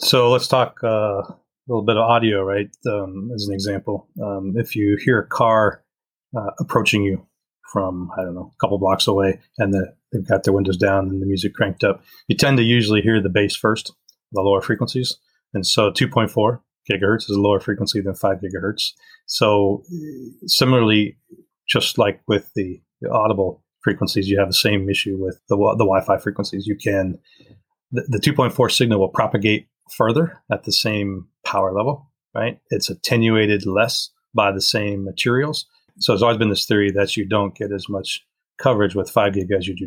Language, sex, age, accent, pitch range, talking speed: English, male, 30-49, American, 100-115 Hz, 190 wpm